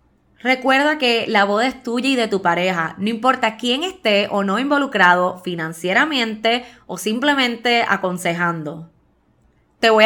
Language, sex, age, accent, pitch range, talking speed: Spanish, female, 20-39, American, 185-265 Hz, 135 wpm